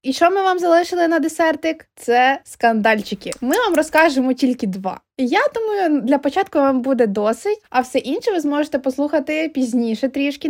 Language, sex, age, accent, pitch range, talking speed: Ukrainian, female, 20-39, native, 230-320 Hz, 165 wpm